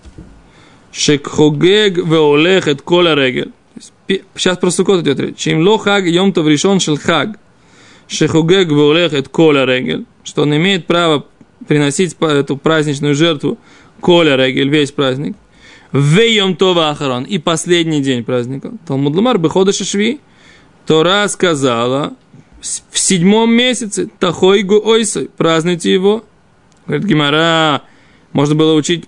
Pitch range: 150-195 Hz